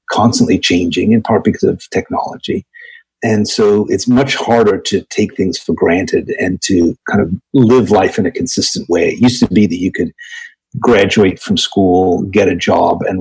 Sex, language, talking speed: male, English, 185 wpm